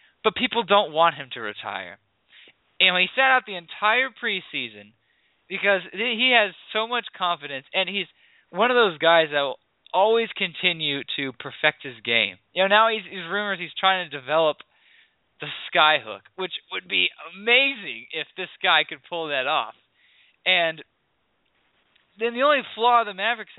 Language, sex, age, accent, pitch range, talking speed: English, male, 20-39, American, 140-200 Hz, 170 wpm